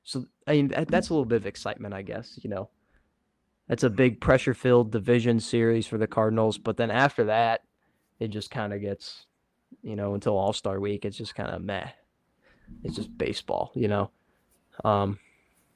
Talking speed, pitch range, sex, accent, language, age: 180 wpm, 110-140 Hz, male, American, English, 20-39